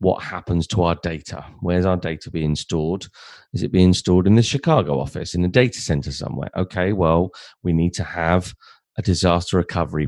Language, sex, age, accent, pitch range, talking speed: English, male, 30-49, British, 90-110 Hz, 190 wpm